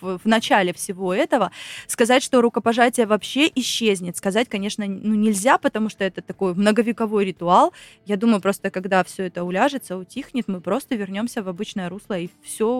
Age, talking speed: 20-39, 165 wpm